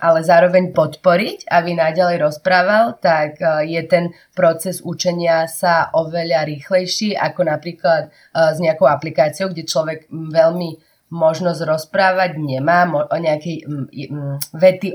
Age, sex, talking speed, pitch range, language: 30-49, female, 110 wpm, 150-180 Hz, Slovak